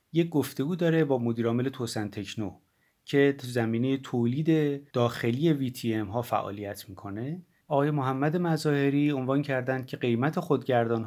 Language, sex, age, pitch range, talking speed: Persian, male, 30-49, 115-145 Hz, 130 wpm